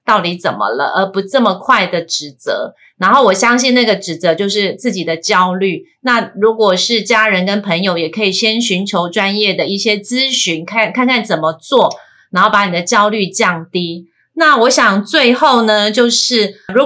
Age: 30-49